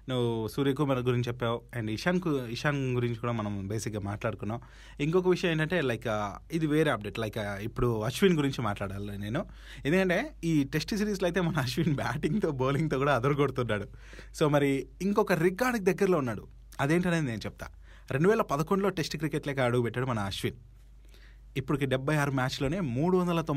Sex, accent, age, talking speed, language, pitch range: male, native, 30-49, 150 wpm, Telugu, 115-155 Hz